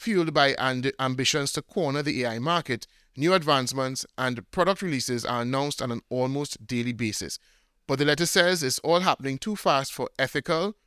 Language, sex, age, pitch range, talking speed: English, male, 30-49, 130-170 Hz, 170 wpm